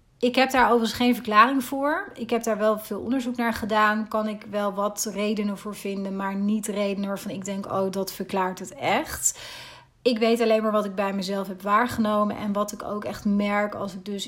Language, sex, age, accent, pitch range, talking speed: Dutch, female, 30-49, Dutch, 200-225 Hz, 220 wpm